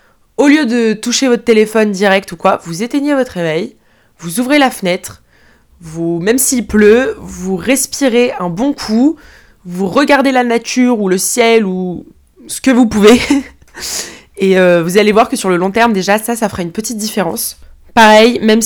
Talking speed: 185 wpm